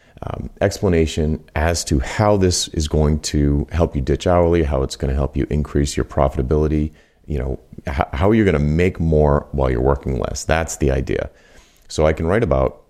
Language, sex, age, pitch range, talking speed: English, male, 40-59, 70-85 Hz, 195 wpm